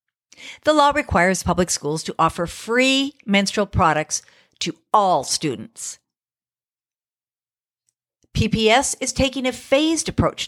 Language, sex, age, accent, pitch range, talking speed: English, female, 50-69, American, 165-260 Hz, 110 wpm